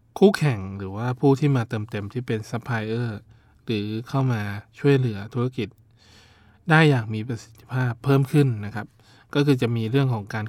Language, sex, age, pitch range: Thai, male, 20-39, 110-130 Hz